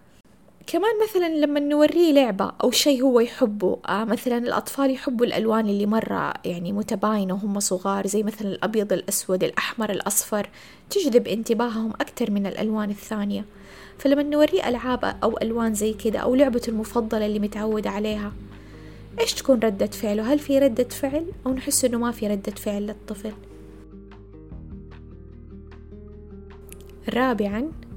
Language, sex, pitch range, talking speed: Arabic, female, 205-255 Hz, 130 wpm